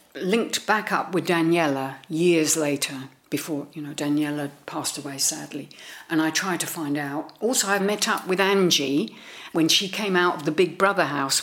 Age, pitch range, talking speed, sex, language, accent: 50-69, 150-195 Hz, 185 wpm, female, English, British